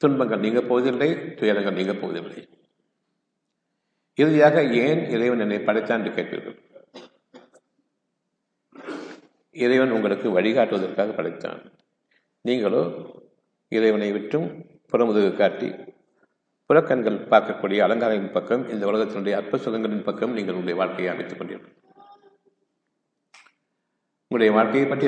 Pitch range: 115-175 Hz